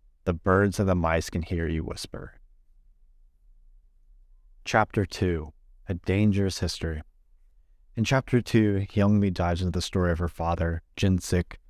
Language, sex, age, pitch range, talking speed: English, male, 30-49, 80-100 Hz, 135 wpm